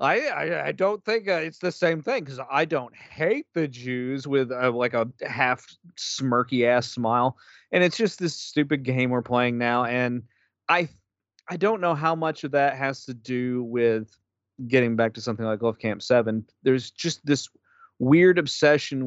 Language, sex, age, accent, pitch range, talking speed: English, male, 30-49, American, 120-160 Hz, 180 wpm